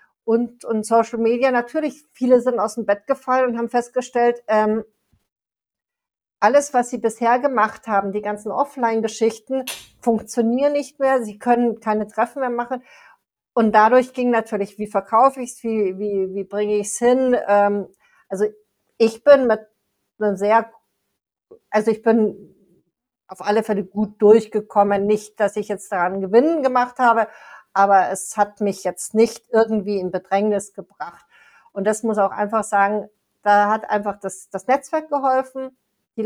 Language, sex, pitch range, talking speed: German, female, 205-245 Hz, 155 wpm